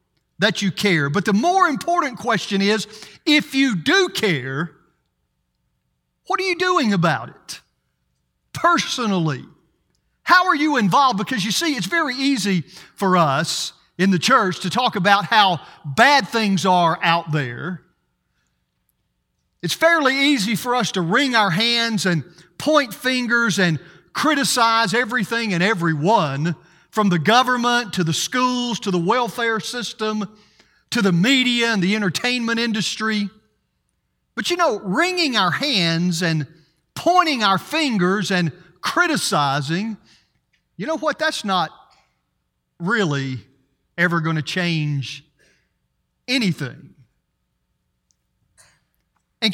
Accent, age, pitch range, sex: American, 50-69, 165-245 Hz, male